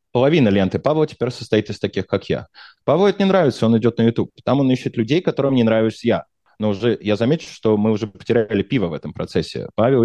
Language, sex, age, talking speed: Russian, male, 20-39, 225 wpm